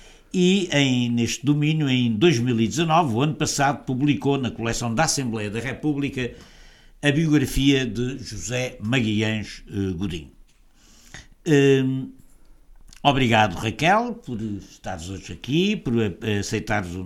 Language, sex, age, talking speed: Portuguese, male, 60-79, 105 wpm